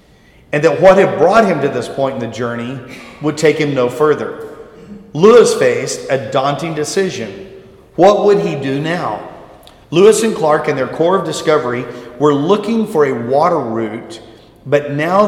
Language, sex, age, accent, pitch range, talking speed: English, male, 40-59, American, 135-190 Hz, 170 wpm